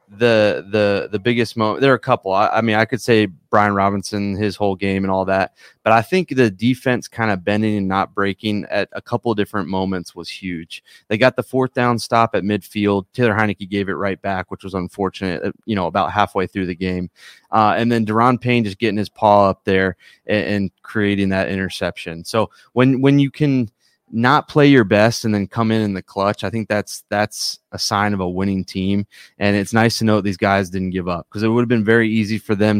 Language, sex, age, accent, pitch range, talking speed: English, male, 20-39, American, 100-115 Hz, 230 wpm